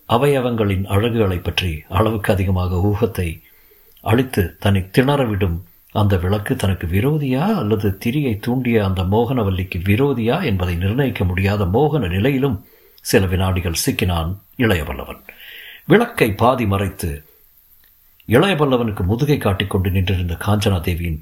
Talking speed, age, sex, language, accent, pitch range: 105 wpm, 50-69, male, Tamil, native, 90-115 Hz